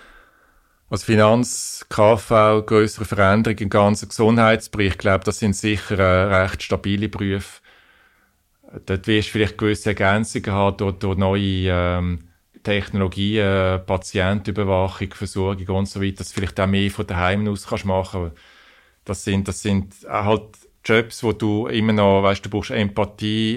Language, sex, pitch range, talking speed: German, male, 95-105 Hz, 150 wpm